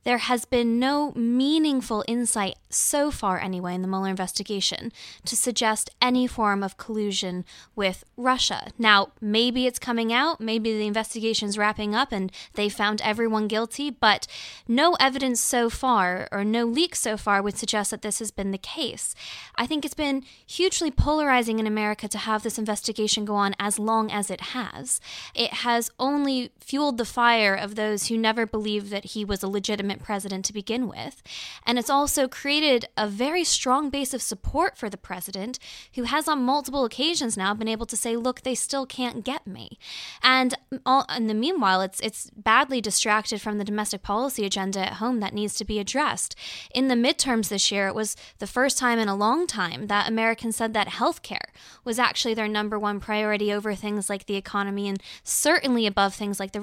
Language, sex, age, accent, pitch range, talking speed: English, female, 10-29, American, 205-250 Hz, 190 wpm